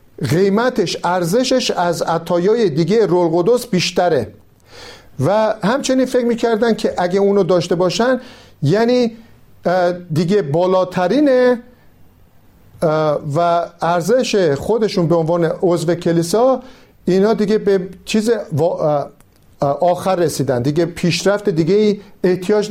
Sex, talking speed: male, 100 wpm